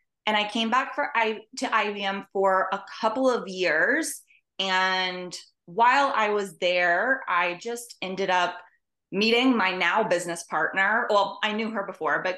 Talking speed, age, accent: 160 wpm, 20-39, American